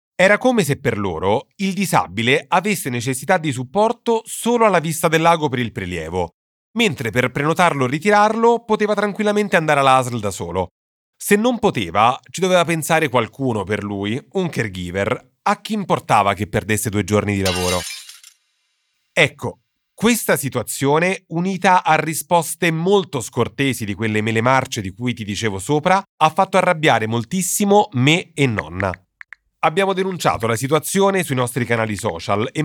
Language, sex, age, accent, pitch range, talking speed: Italian, male, 30-49, native, 115-185 Hz, 155 wpm